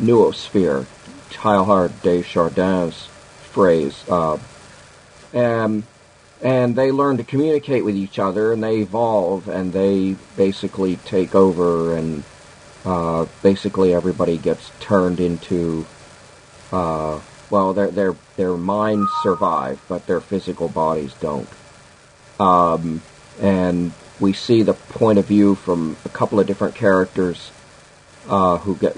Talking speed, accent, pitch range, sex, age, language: 120 wpm, American, 90-105 Hz, male, 50-69, English